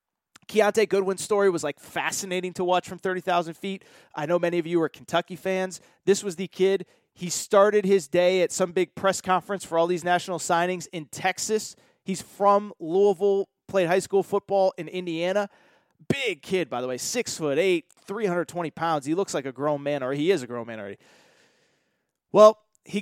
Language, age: English, 20-39